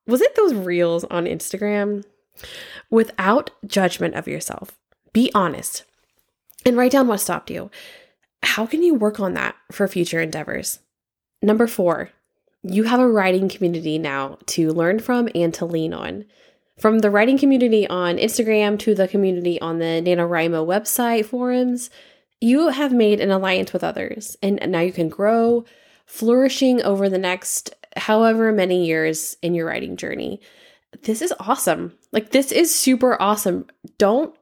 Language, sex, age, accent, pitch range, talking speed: English, female, 20-39, American, 180-245 Hz, 155 wpm